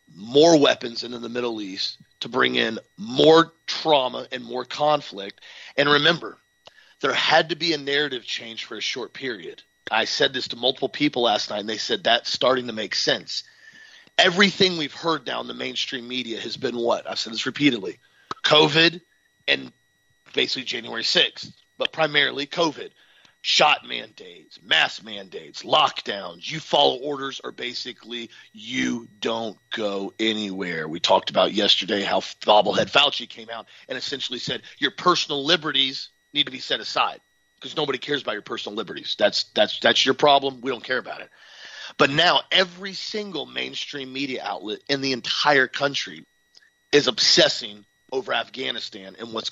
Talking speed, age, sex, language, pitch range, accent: 160 wpm, 30-49, male, English, 115-160 Hz, American